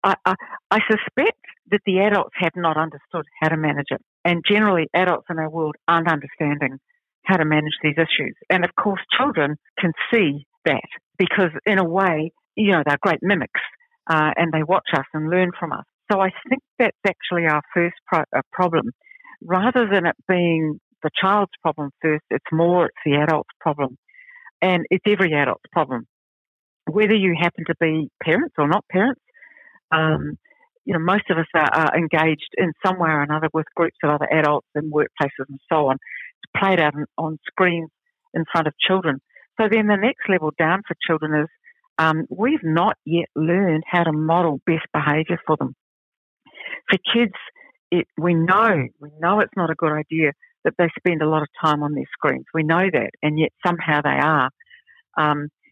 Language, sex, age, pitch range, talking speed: English, female, 60-79, 155-195 Hz, 185 wpm